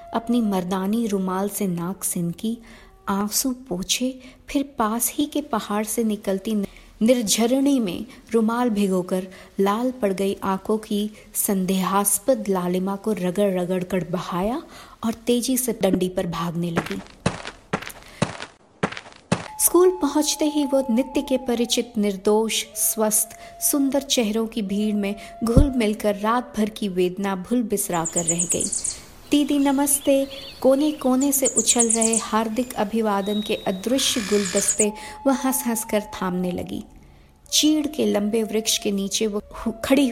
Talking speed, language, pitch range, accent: 115 wpm, English, 195-250 Hz, Indian